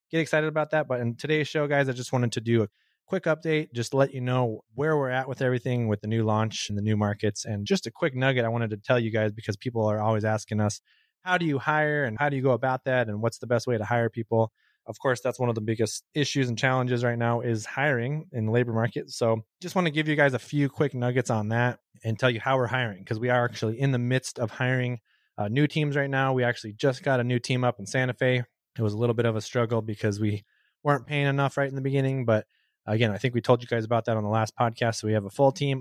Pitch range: 115-140 Hz